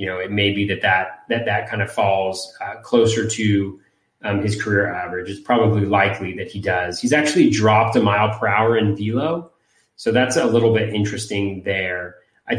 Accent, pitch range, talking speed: American, 100-125 Hz, 200 wpm